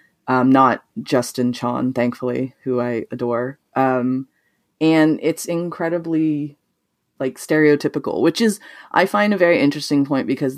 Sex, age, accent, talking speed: female, 20-39, American, 130 wpm